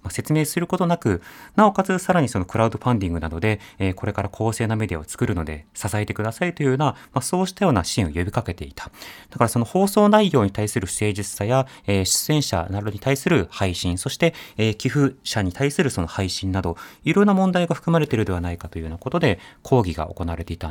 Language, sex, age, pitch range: Japanese, male, 30-49, 95-150 Hz